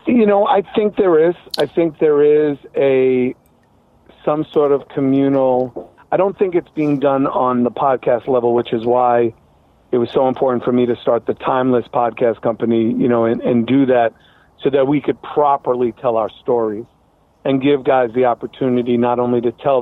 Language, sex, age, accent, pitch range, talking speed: English, male, 40-59, American, 120-140 Hz, 190 wpm